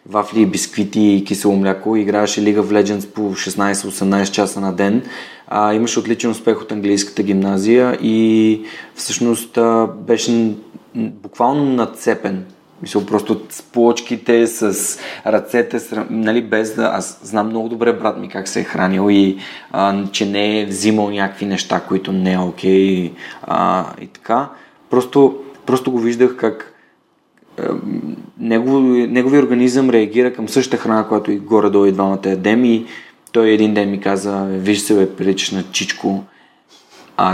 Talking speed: 150 wpm